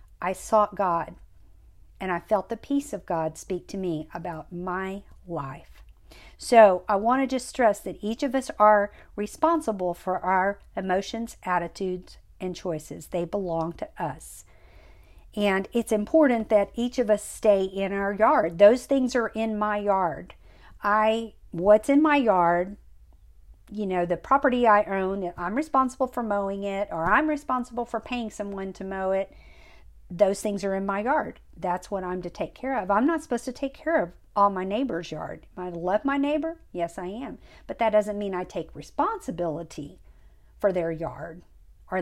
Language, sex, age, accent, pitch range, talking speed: English, female, 50-69, American, 180-235 Hz, 175 wpm